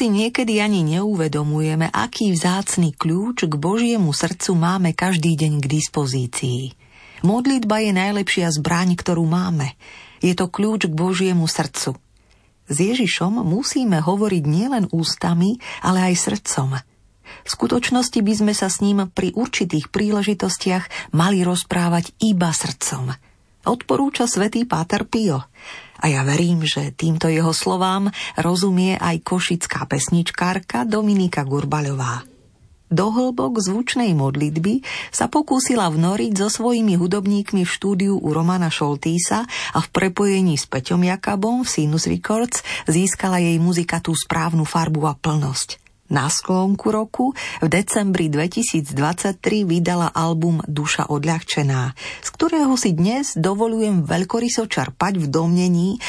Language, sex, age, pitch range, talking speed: Slovak, female, 40-59, 155-205 Hz, 125 wpm